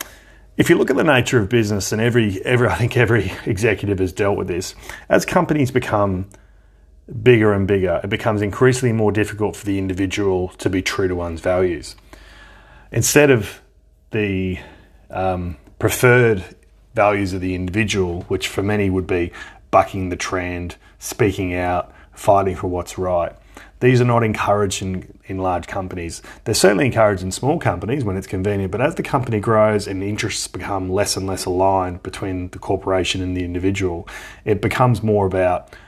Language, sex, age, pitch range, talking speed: English, male, 30-49, 95-110 Hz, 170 wpm